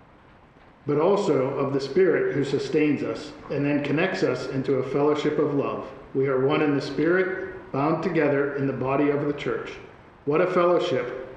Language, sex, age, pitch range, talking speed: English, male, 50-69, 135-160 Hz, 180 wpm